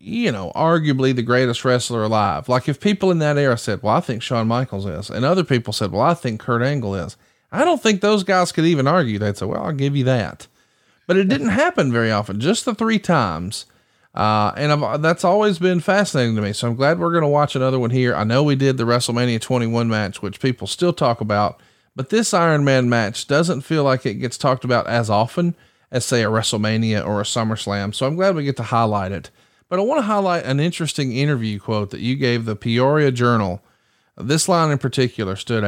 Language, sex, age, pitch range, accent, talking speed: English, male, 40-59, 110-150 Hz, American, 230 wpm